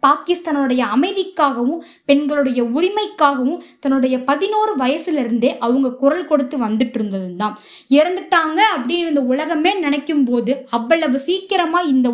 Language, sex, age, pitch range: Tamil, female, 20-39, 260-345 Hz